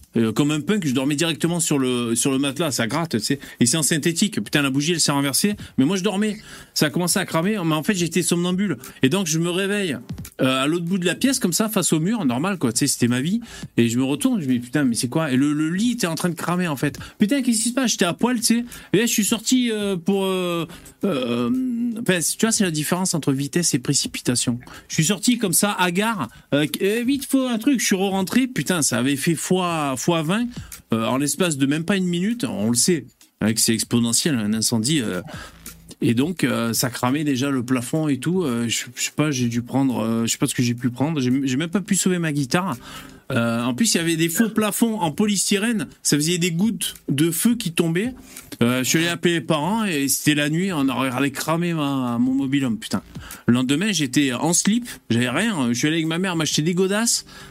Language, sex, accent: French, male, French